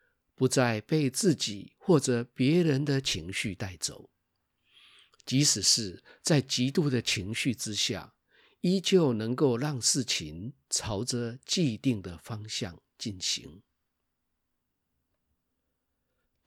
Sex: male